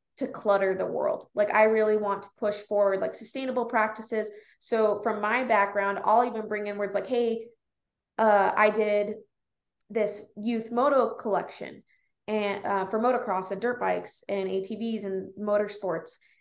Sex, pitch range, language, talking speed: female, 200-235 Hz, English, 155 wpm